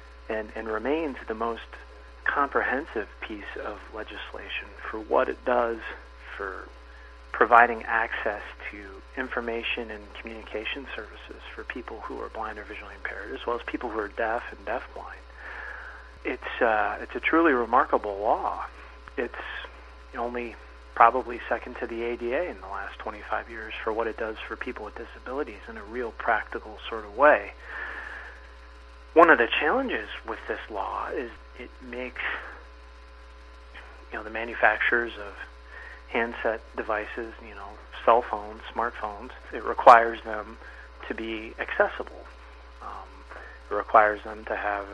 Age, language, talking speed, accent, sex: 40-59, English, 140 wpm, American, male